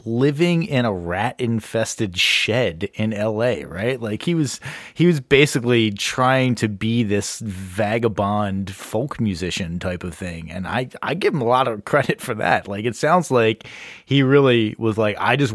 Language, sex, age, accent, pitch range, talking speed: English, male, 30-49, American, 105-135 Hz, 175 wpm